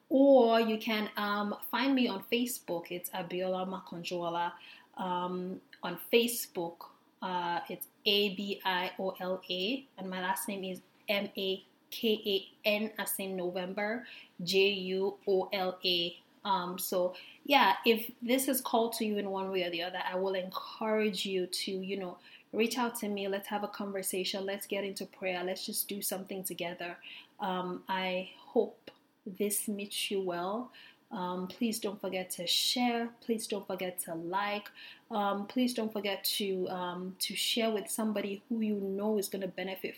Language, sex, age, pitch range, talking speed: English, female, 20-39, 185-220 Hz, 155 wpm